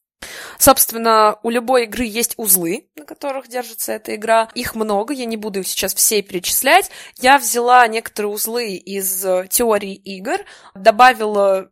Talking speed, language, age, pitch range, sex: 145 wpm, Russian, 20-39, 195-240 Hz, female